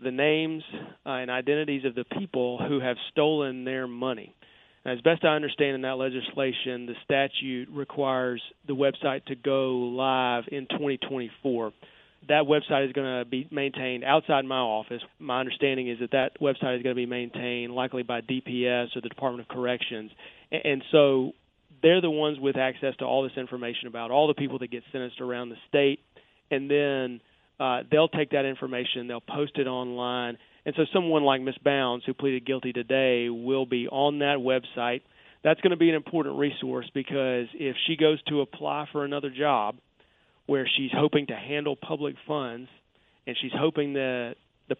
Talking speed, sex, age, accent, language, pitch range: 180 wpm, male, 40-59, American, English, 125-145 Hz